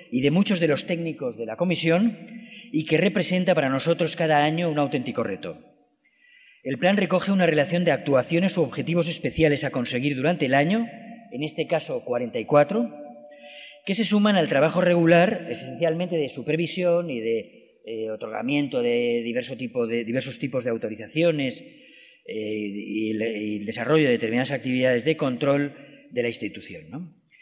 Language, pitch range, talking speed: Spanish, 140-185 Hz, 155 wpm